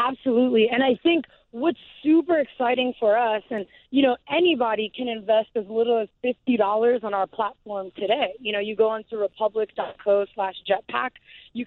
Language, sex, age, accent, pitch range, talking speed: English, female, 20-39, American, 210-255 Hz, 175 wpm